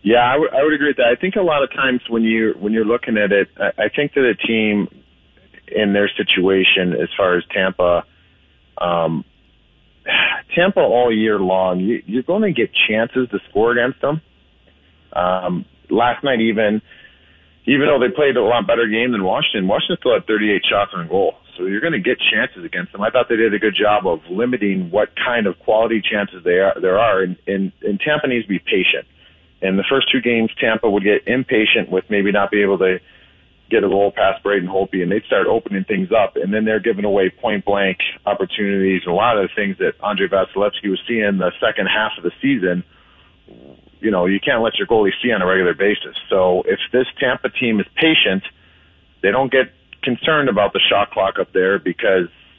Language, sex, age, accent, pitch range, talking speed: English, male, 40-59, American, 95-115 Hz, 210 wpm